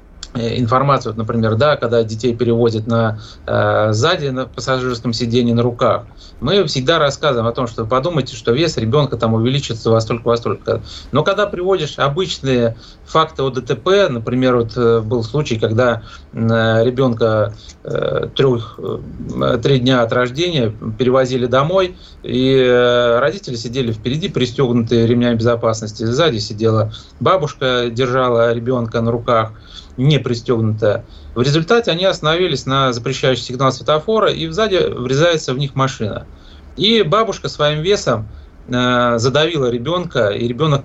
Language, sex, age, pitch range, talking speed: Russian, male, 30-49, 115-150 Hz, 130 wpm